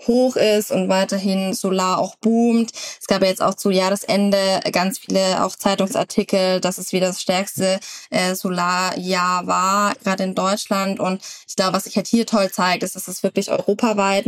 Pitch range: 180-200 Hz